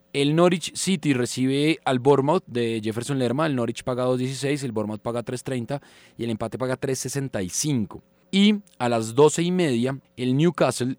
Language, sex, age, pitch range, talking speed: Spanish, male, 20-39, 110-140 Hz, 165 wpm